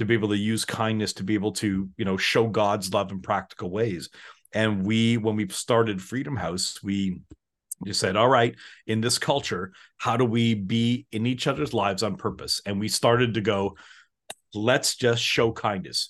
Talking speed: 195 wpm